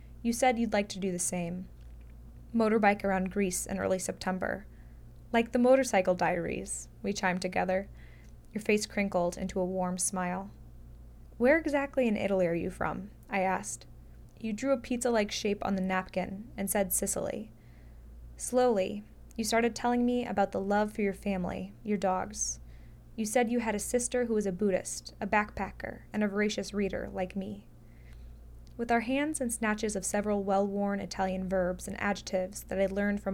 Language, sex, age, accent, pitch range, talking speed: English, female, 20-39, American, 180-215 Hz, 170 wpm